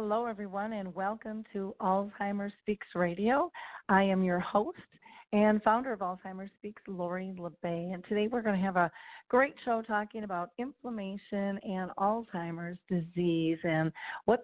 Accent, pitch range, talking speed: American, 180-220 Hz, 145 wpm